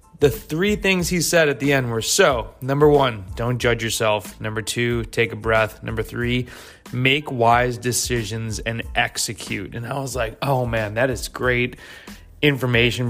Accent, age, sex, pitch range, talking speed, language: American, 20-39, male, 110-120 Hz, 170 wpm, English